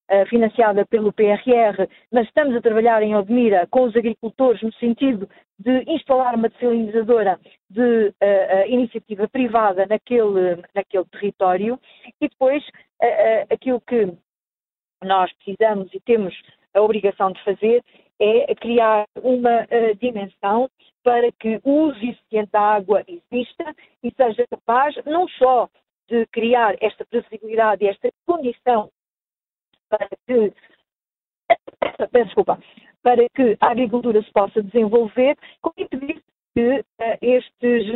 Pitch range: 210-250 Hz